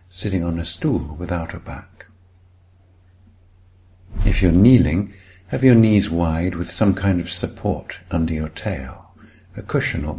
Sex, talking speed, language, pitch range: male, 145 wpm, English, 85-100 Hz